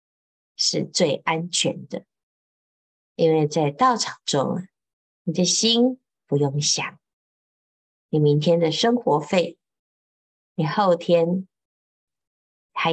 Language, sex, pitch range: Chinese, female, 145-190 Hz